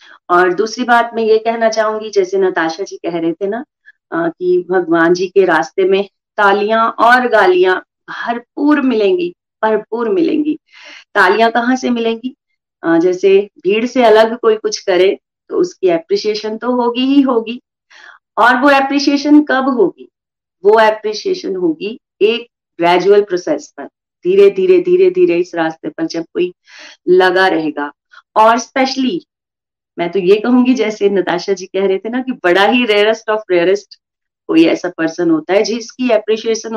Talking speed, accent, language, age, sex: 155 wpm, native, Hindi, 30-49, female